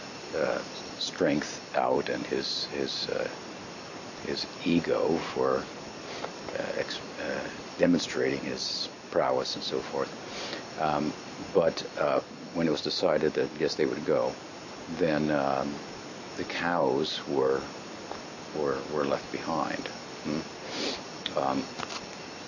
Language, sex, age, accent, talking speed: English, male, 60-79, American, 110 wpm